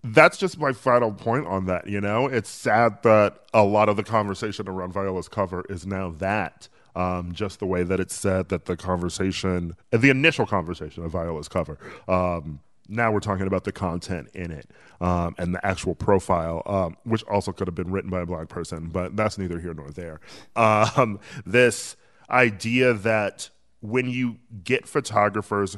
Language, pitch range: English, 90-110 Hz